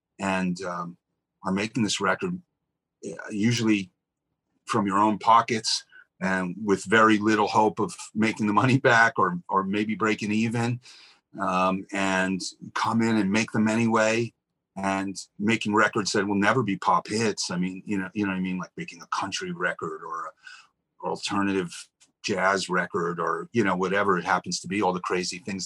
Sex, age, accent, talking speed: male, 40-59, American, 175 wpm